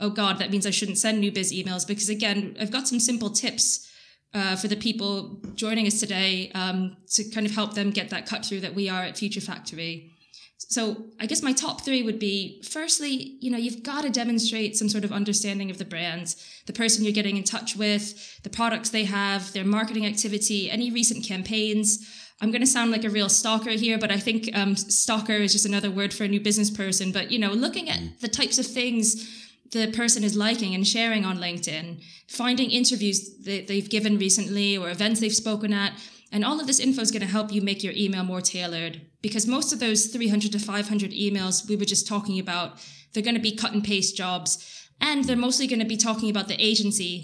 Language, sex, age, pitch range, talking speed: English, female, 20-39, 195-225 Hz, 220 wpm